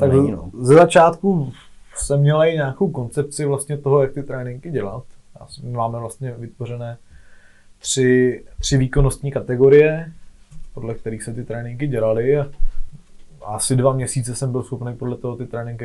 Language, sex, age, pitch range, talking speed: Czech, male, 20-39, 110-130 Hz, 140 wpm